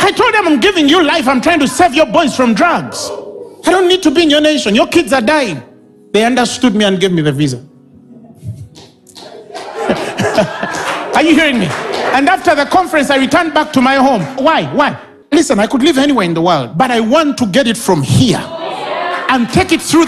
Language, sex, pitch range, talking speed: English, male, 245-350 Hz, 210 wpm